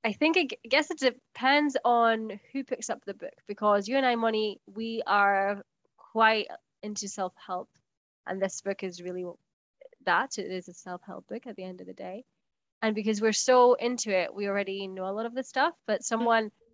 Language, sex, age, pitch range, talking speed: English, female, 10-29, 190-235 Hz, 200 wpm